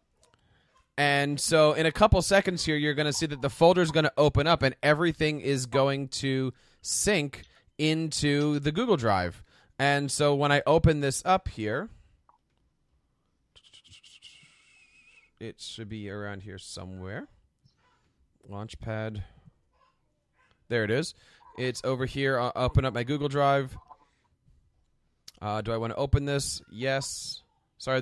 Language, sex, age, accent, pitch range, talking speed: English, male, 30-49, American, 115-150 Hz, 140 wpm